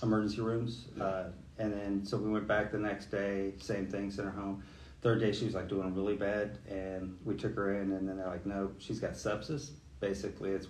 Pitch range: 95-110 Hz